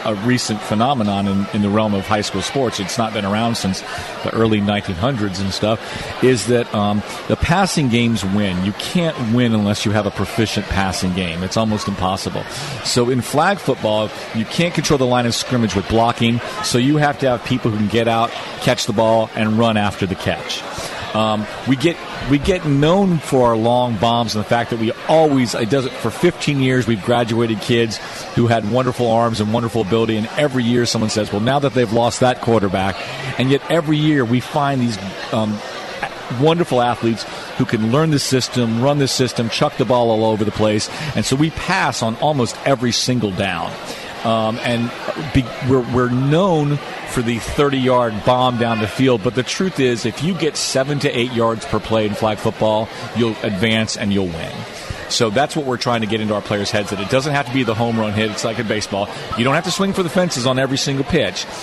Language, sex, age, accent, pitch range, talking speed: English, male, 40-59, American, 110-135 Hz, 215 wpm